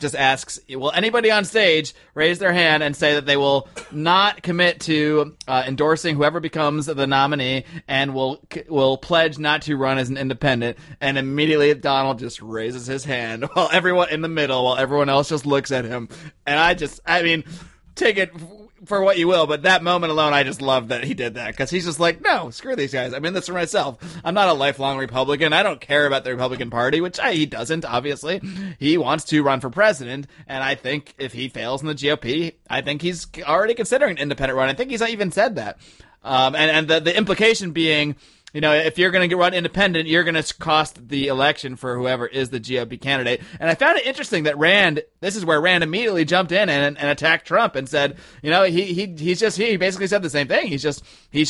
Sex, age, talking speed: male, 30-49, 225 wpm